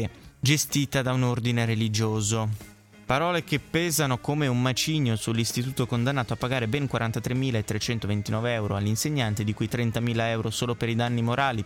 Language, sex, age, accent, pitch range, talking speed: Italian, male, 20-39, native, 110-130 Hz, 145 wpm